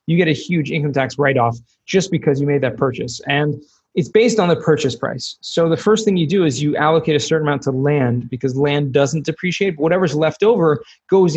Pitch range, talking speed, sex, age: 140-180 Hz, 220 wpm, male, 20-39